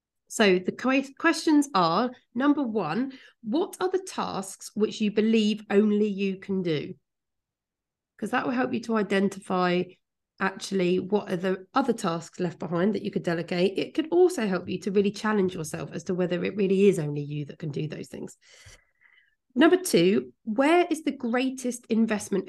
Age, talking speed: 30-49, 175 wpm